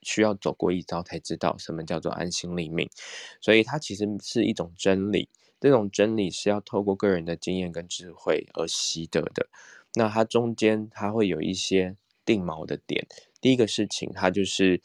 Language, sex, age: Chinese, male, 20-39